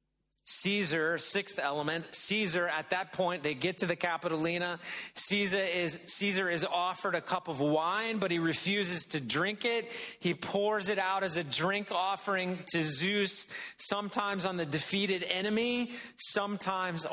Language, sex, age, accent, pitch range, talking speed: English, male, 40-59, American, 155-185 Hz, 150 wpm